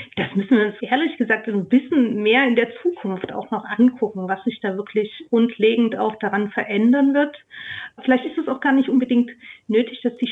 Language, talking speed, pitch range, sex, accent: German, 200 wpm, 220-255 Hz, female, German